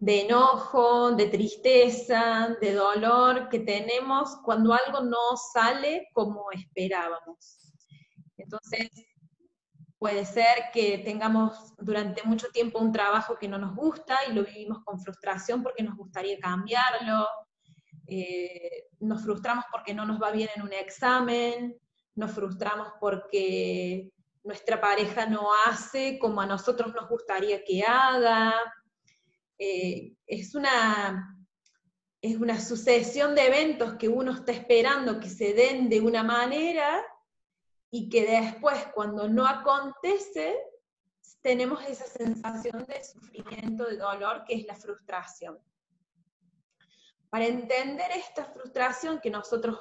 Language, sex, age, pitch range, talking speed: Spanish, female, 20-39, 195-245 Hz, 125 wpm